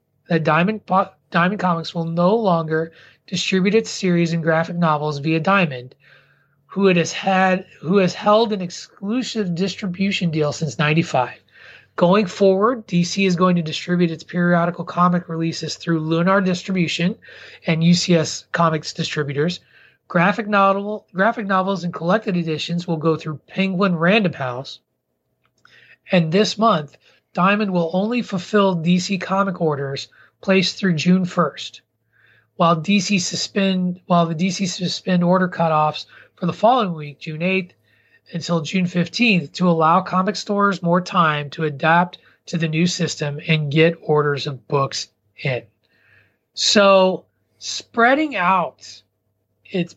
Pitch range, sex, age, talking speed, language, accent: 155-190 Hz, male, 30-49, 135 wpm, English, American